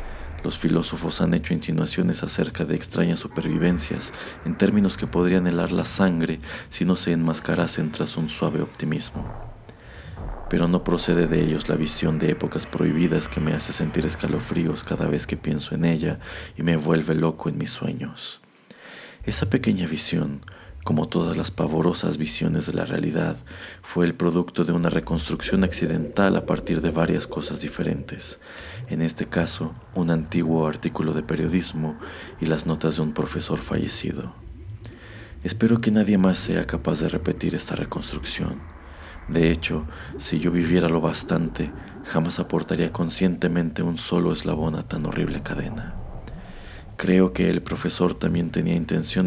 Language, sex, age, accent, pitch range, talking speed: Spanish, male, 40-59, Mexican, 80-90 Hz, 150 wpm